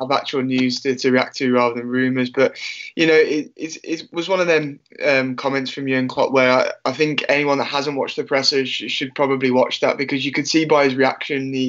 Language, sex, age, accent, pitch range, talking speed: English, male, 20-39, British, 135-145 Hz, 245 wpm